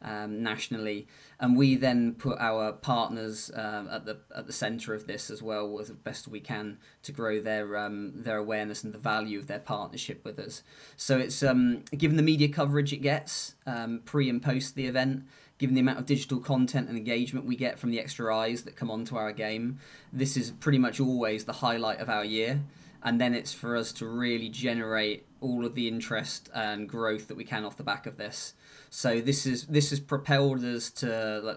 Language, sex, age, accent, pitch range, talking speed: English, male, 20-39, British, 110-130 Hz, 215 wpm